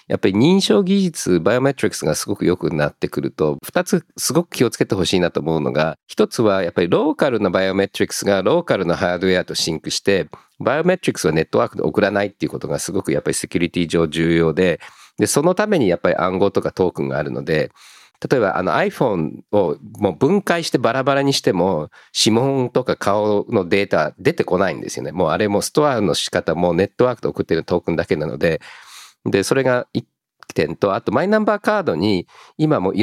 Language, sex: Japanese, male